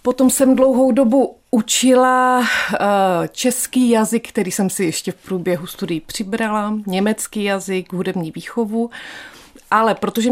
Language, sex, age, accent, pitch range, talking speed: Czech, female, 30-49, native, 185-220 Hz, 120 wpm